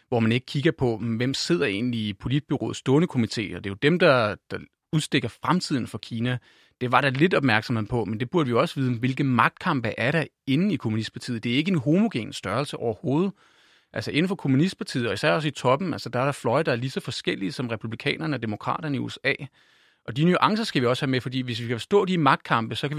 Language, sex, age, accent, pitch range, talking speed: Danish, male, 30-49, native, 120-155 Hz, 235 wpm